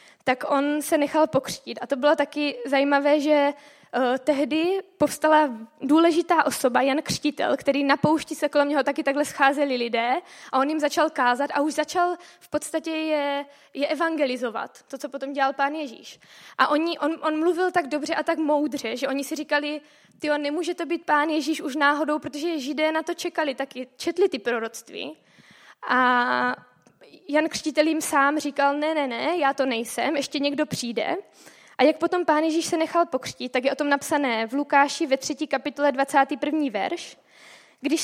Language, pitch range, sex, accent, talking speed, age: Czech, 275-315 Hz, female, native, 175 wpm, 20-39